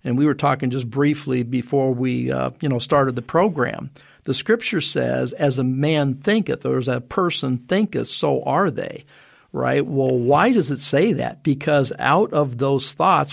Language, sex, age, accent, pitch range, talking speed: English, male, 50-69, American, 130-155 Hz, 185 wpm